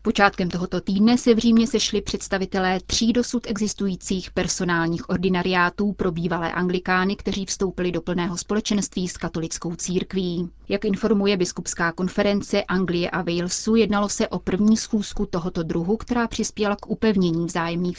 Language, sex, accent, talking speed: Czech, female, native, 145 wpm